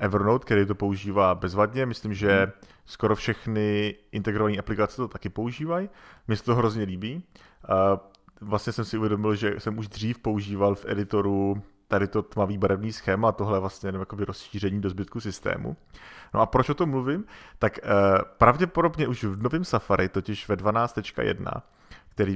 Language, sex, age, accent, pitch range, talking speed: Czech, male, 30-49, native, 100-125 Hz, 160 wpm